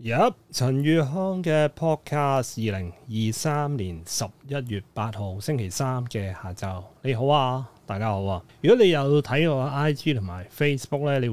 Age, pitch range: 30-49, 105-145 Hz